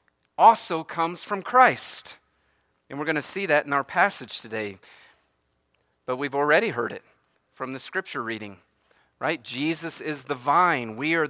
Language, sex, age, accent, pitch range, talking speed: English, male, 40-59, American, 115-155 Hz, 160 wpm